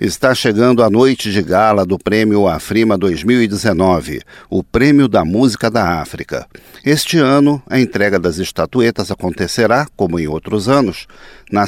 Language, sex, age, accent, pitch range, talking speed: Portuguese, male, 50-69, Brazilian, 95-125 Hz, 145 wpm